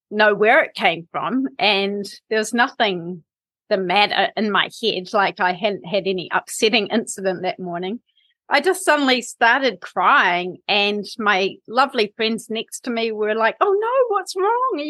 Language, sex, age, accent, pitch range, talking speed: English, female, 30-49, Australian, 195-255 Hz, 170 wpm